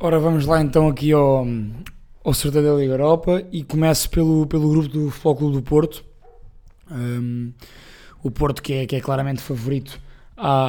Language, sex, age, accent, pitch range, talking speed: Portuguese, male, 20-39, Portuguese, 130-155 Hz, 165 wpm